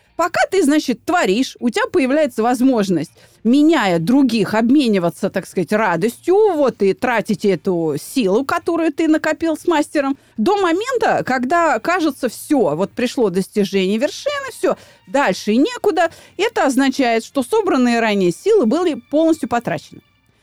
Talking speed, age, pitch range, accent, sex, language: 135 wpm, 30-49, 215-315 Hz, native, female, Russian